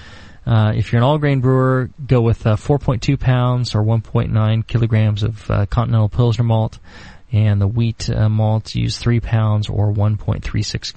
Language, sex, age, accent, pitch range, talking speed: English, male, 30-49, American, 105-125 Hz, 160 wpm